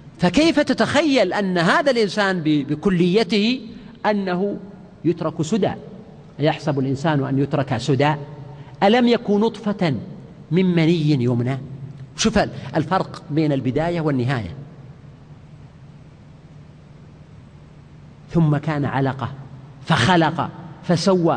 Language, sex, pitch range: Arabic, male, 150-190 Hz